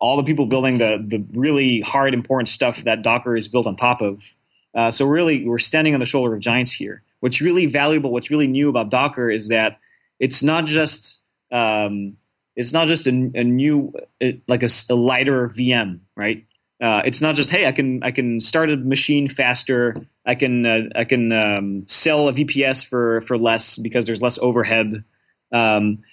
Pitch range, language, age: 115-145 Hz, English, 20-39